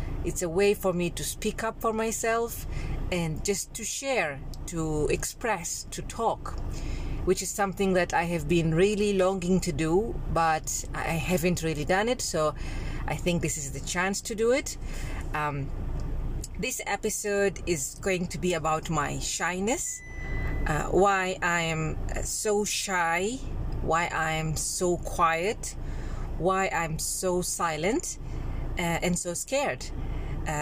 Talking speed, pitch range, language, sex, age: 145 wpm, 165-210 Hz, English, female, 30-49